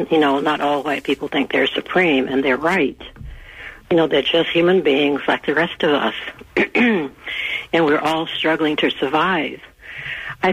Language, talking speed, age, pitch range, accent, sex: English, 170 wpm, 60-79, 145-185 Hz, American, female